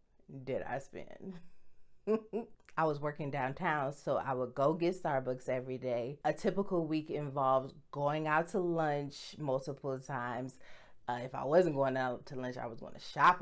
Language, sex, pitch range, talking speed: English, female, 135-160 Hz, 170 wpm